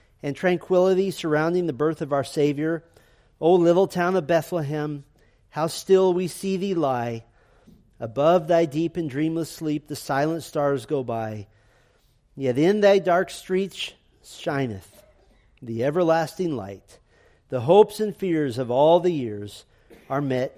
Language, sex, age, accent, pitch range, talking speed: English, male, 40-59, American, 130-180 Hz, 145 wpm